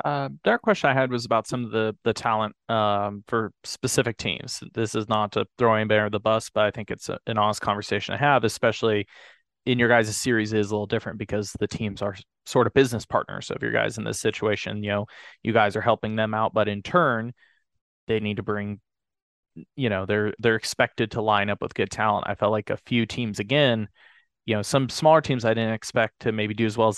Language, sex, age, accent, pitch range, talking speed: English, male, 20-39, American, 105-120 Hz, 240 wpm